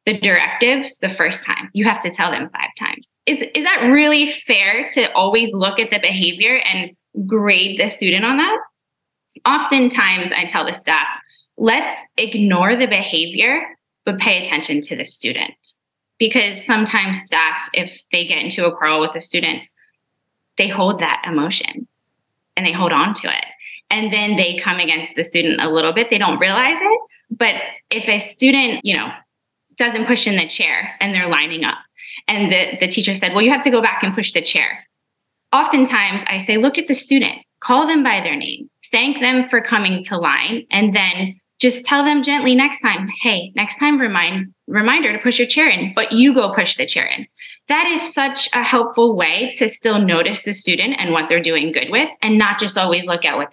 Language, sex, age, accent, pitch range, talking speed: English, female, 20-39, American, 185-255 Hz, 200 wpm